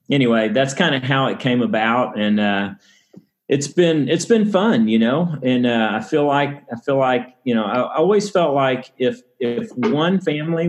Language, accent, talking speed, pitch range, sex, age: English, American, 200 wpm, 110-135 Hz, male, 40-59